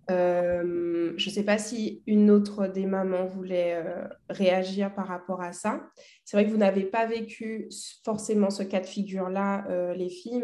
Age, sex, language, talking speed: 20-39, female, French, 185 wpm